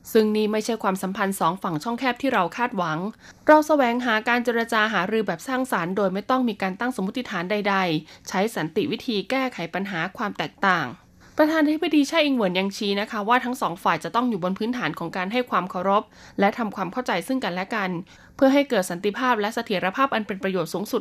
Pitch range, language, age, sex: 190-245 Hz, Thai, 20-39, female